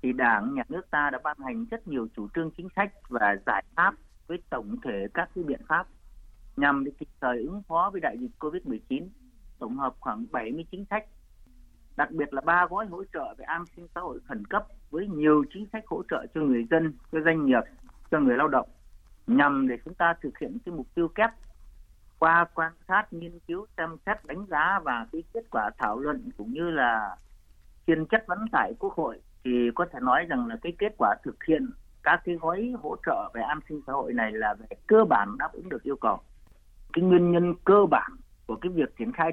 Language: Vietnamese